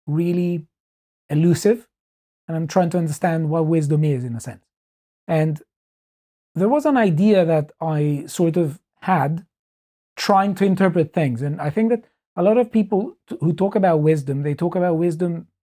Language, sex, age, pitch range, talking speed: English, male, 30-49, 150-185 Hz, 165 wpm